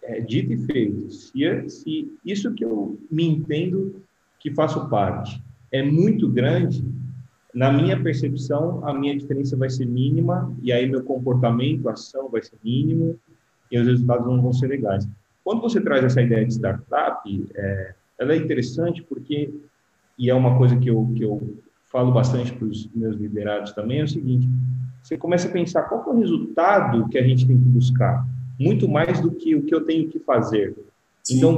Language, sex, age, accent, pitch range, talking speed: Portuguese, male, 40-59, Brazilian, 120-150 Hz, 185 wpm